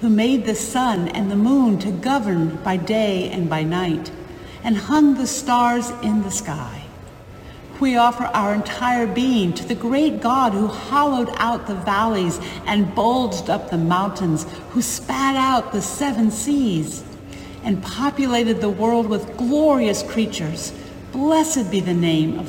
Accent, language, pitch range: American, English, 180-255 Hz